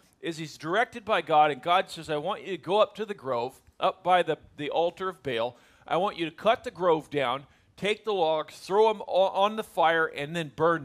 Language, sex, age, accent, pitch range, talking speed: English, male, 40-59, American, 160-230 Hz, 240 wpm